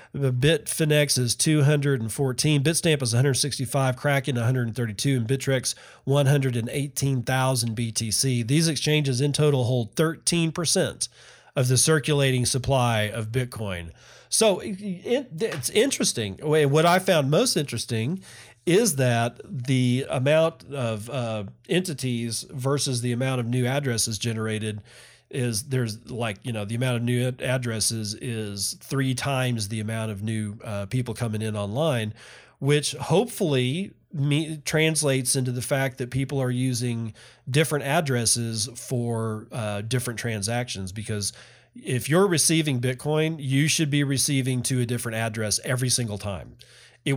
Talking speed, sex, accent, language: 130 wpm, male, American, English